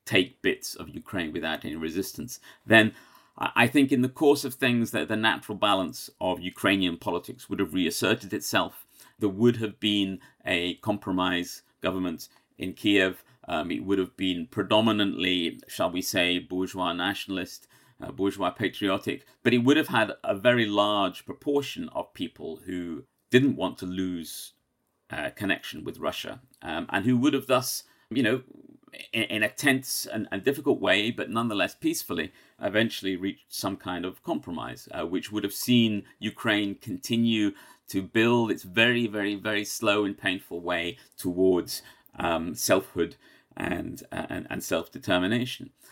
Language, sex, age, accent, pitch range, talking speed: English, male, 40-59, British, 95-120 Hz, 155 wpm